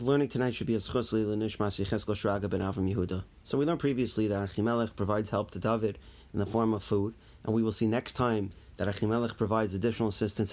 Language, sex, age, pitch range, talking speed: English, male, 30-49, 100-125 Hz, 200 wpm